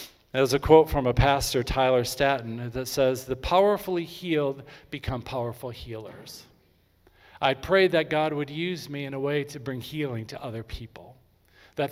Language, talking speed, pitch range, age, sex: English, 165 wpm, 110-140 Hz, 50-69, male